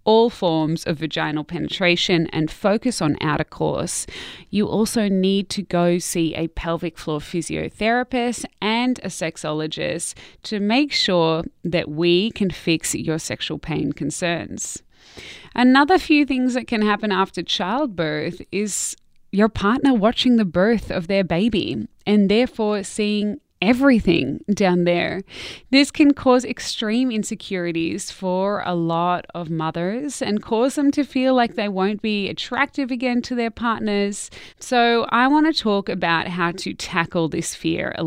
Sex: female